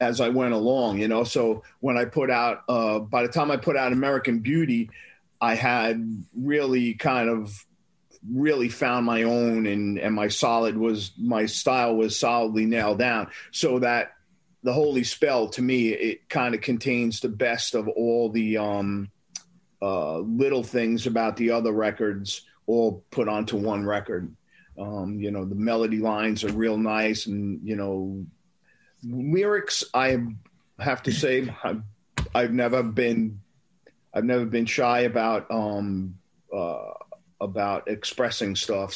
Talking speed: 155 wpm